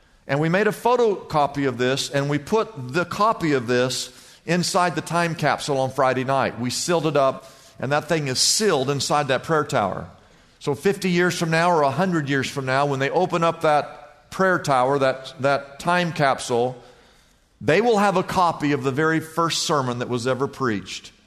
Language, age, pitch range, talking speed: English, 50-69, 135-170 Hz, 195 wpm